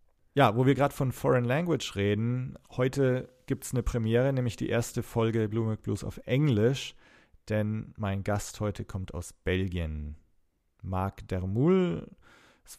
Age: 40-59